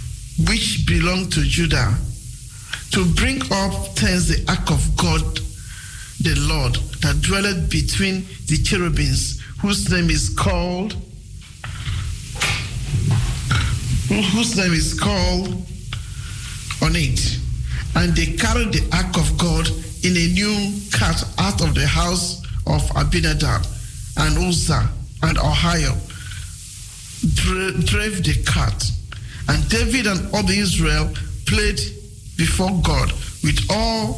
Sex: male